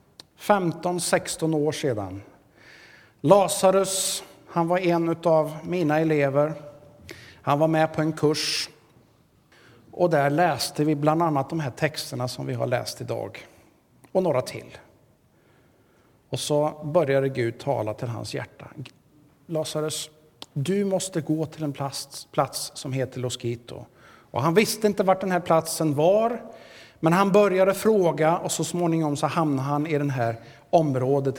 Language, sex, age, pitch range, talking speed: Swedish, male, 50-69, 140-175 Hz, 140 wpm